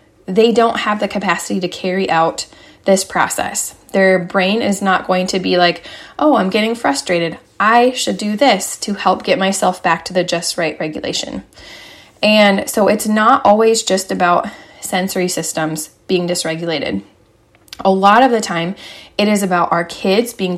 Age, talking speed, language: 20-39, 170 wpm, English